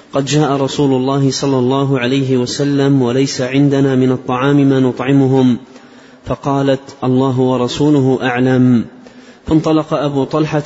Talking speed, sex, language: 120 wpm, male, Arabic